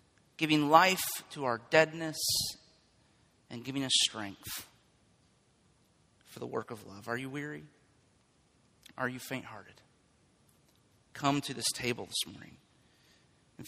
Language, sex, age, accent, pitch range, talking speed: English, male, 30-49, American, 120-140 Hz, 120 wpm